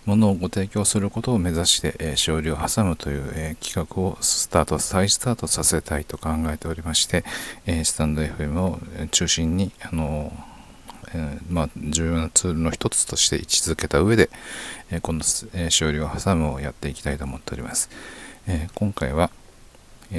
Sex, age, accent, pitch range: male, 40-59, native, 75-95 Hz